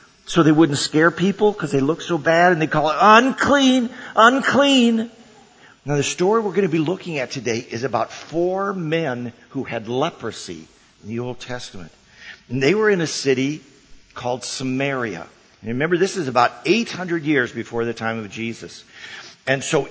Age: 50-69